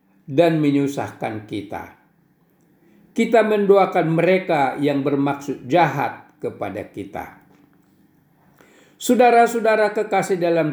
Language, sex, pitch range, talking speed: Indonesian, male, 170-200 Hz, 80 wpm